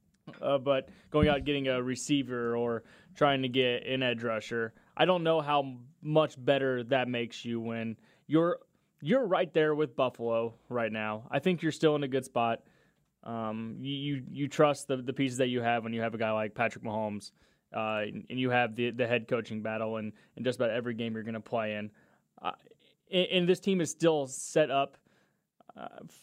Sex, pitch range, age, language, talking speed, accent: male, 120-145 Hz, 20-39, English, 210 wpm, American